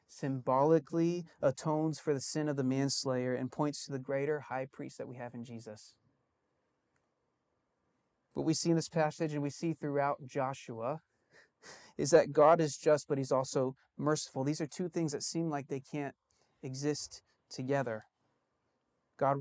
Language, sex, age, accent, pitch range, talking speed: English, male, 30-49, American, 140-165 Hz, 160 wpm